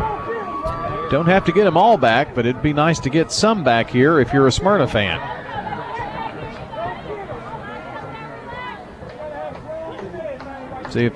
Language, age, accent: English, 40-59, American